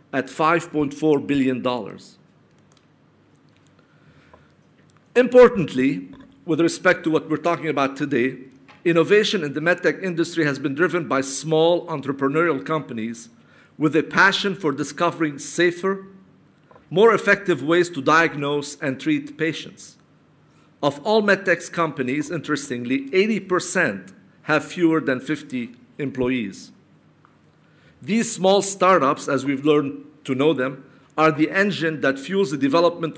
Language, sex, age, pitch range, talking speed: English, male, 50-69, 145-175 Hz, 120 wpm